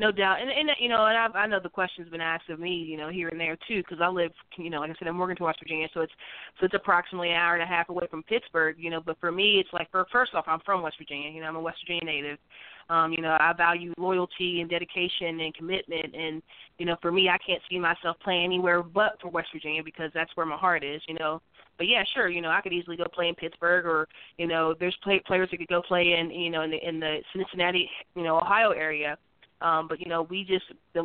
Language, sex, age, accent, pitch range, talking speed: English, female, 20-39, American, 165-195 Hz, 270 wpm